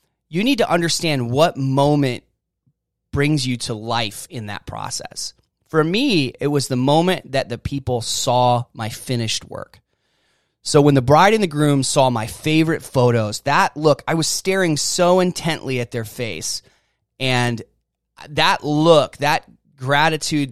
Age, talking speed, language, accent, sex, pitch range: 30-49, 150 wpm, English, American, male, 115-155 Hz